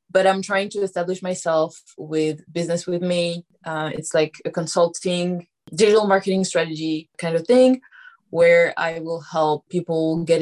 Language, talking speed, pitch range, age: English, 155 wpm, 170-195 Hz, 20-39